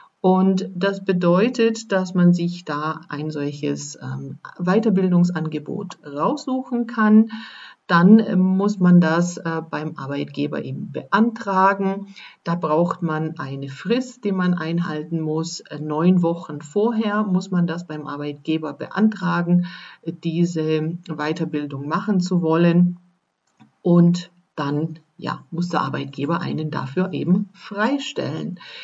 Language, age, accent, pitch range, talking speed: German, 50-69, German, 155-190 Hz, 110 wpm